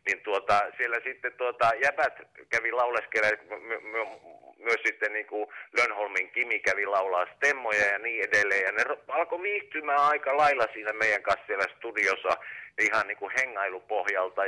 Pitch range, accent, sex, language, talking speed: 125-150 Hz, native, male, Finnish, 160 wpm